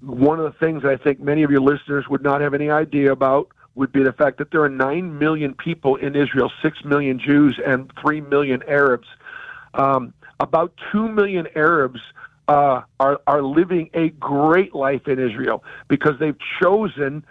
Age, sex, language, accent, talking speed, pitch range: 50-69, male, English, American, 185 wpm, 140-180 Hz